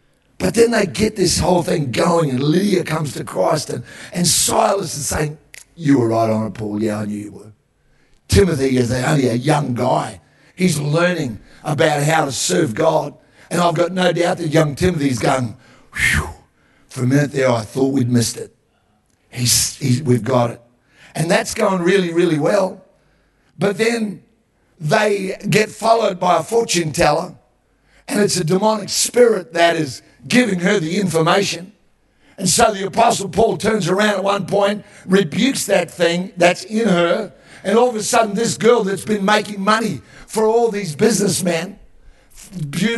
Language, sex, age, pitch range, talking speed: English, male, 50-69, 145-215 Hz, 175 wpm